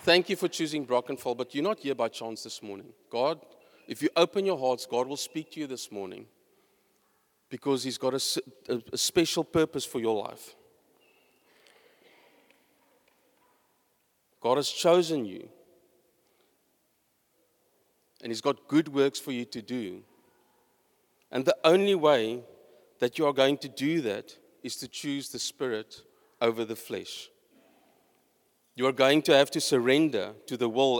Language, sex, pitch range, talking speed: English, male, 125-180 Hz, 155 wpm